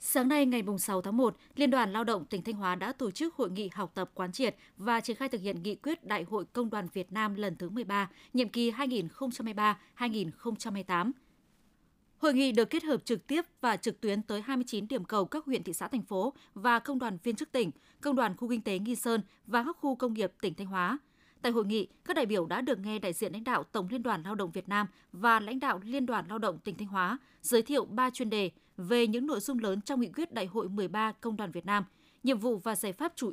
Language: Vietnamese